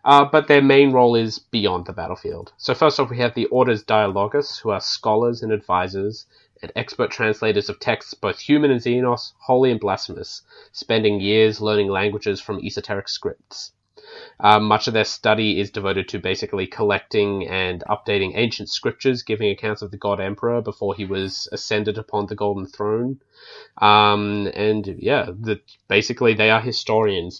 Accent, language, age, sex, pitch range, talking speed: Australian, English, 20-39, male, 100-115 Hz, 165 wpm